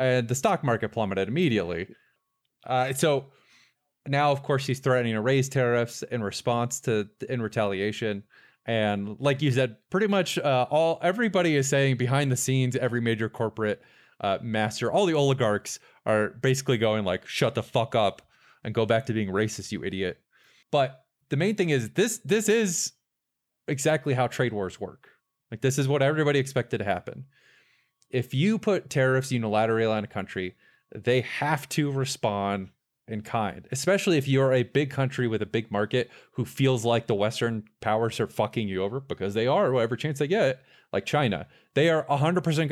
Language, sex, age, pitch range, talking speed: English, male, 20-39, 115-145 Hz, 175 wpm